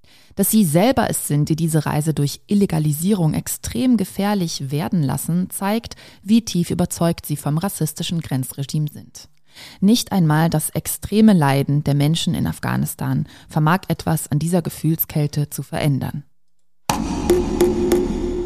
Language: German